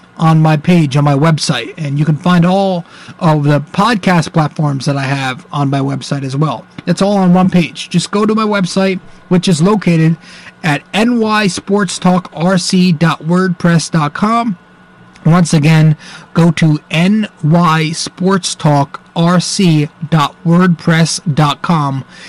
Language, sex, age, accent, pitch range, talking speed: English, male, 30-49, American, 150-185 Hz, 115 wpm